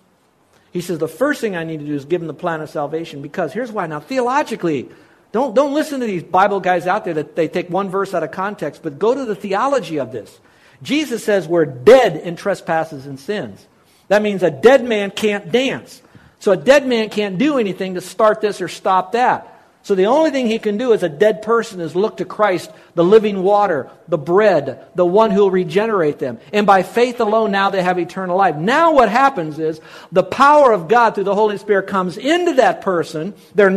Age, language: 50-69, English